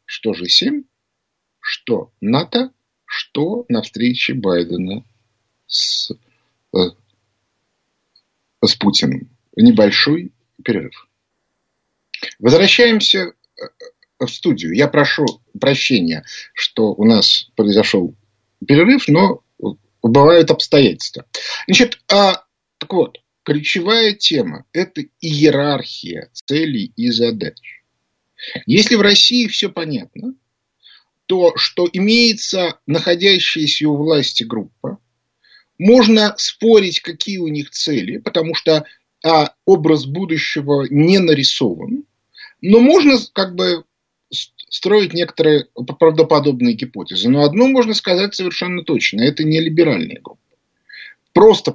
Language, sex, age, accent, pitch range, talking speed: Russian, male, 50-69, native, 145-220 Hz, 95 wpm